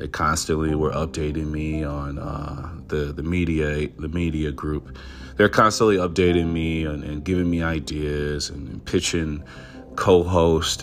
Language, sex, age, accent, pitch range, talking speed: English, male, 40-59, American, 75-90 Hz, 145 wpm